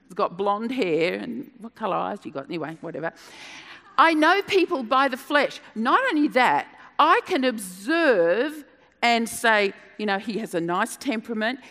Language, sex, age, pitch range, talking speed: English, female, 50-69, 210-310 Hz, 170 wpm